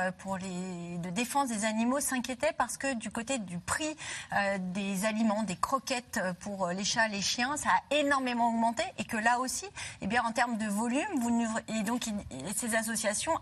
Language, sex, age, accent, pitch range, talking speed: French, female, 30-49, French, 200-260 Hz, 200 wpm